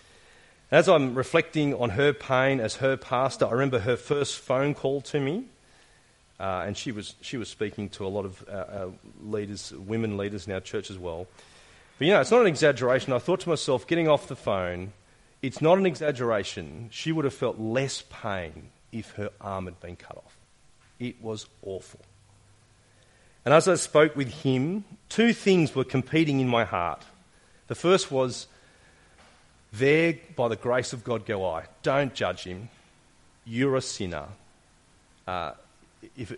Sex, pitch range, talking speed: male, 100-135 Hz, 170 wpm